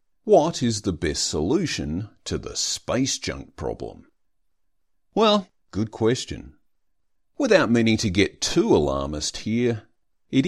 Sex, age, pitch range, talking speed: male, 40-59, 90-120 Hz, 120 wpm